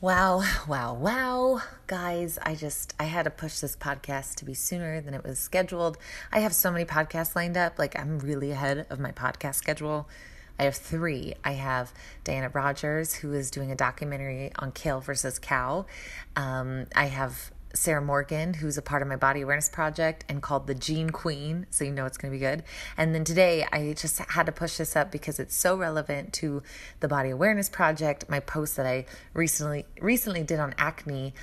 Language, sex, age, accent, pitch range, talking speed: English, female, 20-39, American, 140-165 Hz, 195 wpm